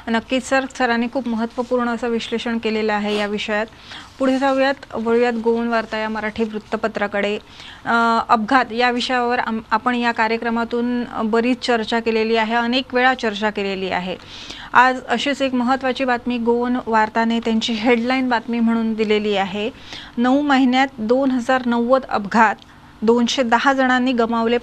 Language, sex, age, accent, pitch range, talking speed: English, female, 30-49, Indian, 230-265 Hz, 120 wpm